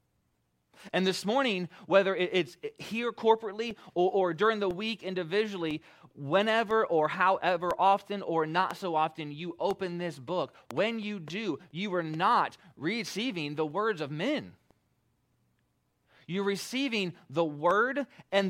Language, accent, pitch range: English, American, 155-200 Hz